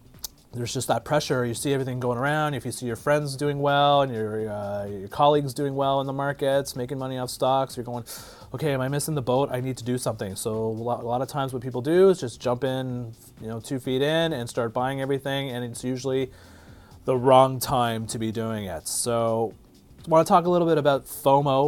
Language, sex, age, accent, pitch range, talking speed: English, male, 30-49, American, 110-140 Hz, 235 wpm